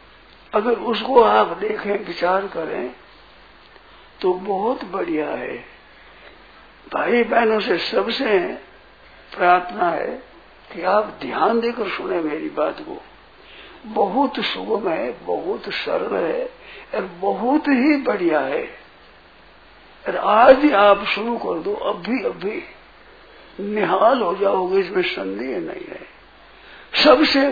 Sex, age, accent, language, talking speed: male, 60-79, native, Hindi, 115 wpm